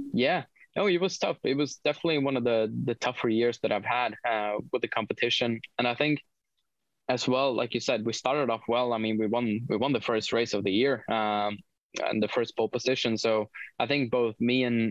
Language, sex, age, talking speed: English, male, 20-39, 230 wpm